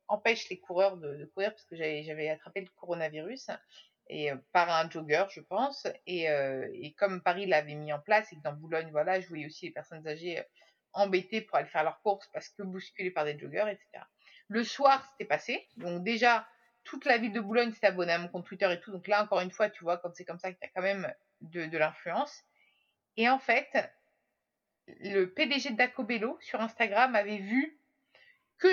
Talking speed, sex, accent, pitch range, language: 215 wpm, female, French, 185-270 Hz, French